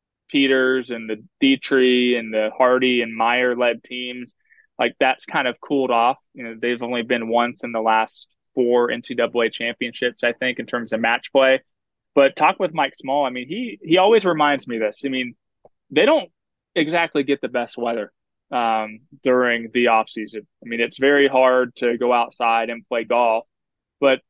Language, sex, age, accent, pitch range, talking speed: English, male, 20-39, American, 115-135 Hz, 190 wpm